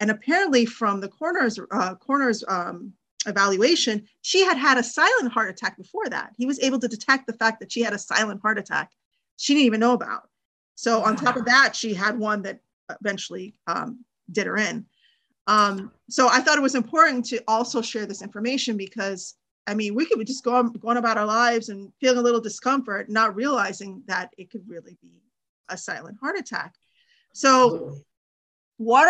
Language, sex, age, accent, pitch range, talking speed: English, female, 30-49, American, 210-265 Hz, 190 wpm